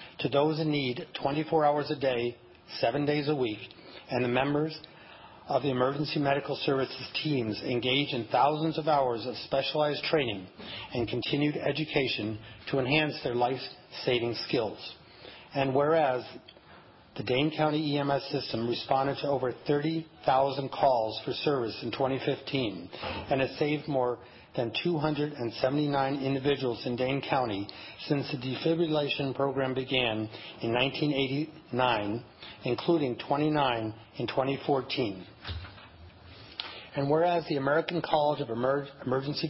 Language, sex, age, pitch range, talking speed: English, male, 40-59, 125-150 Hz, 125 wpm